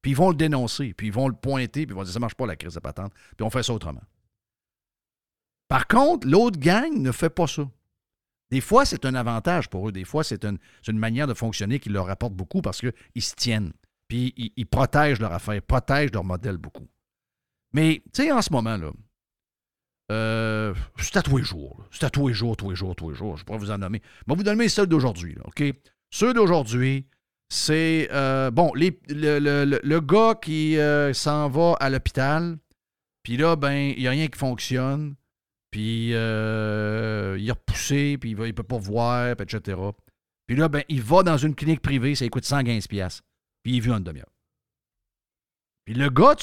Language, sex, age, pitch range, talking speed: French, male, 50-69, 105-150 Hz, 220 wpm